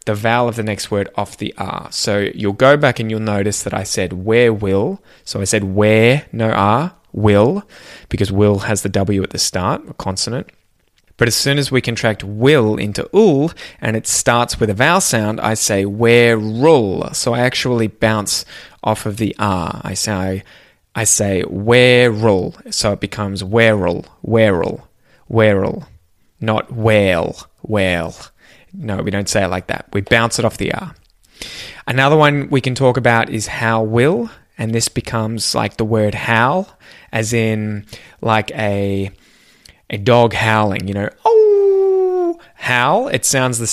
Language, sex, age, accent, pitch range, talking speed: English, male, 20-39, Australian, 100-125 Hz, 175 wpm